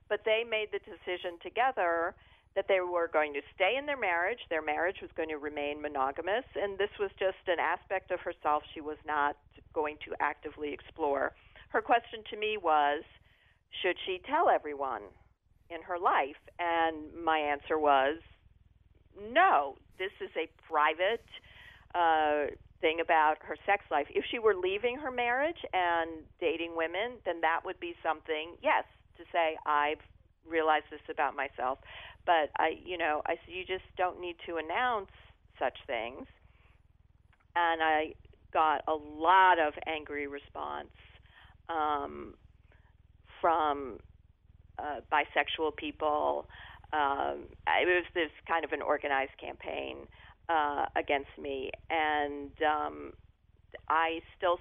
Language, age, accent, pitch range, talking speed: English, 50-69, American, 145-180 Hz, 140 wpm